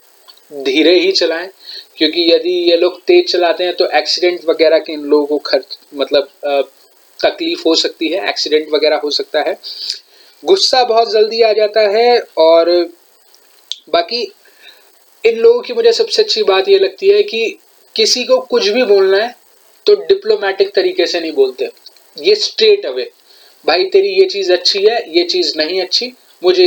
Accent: native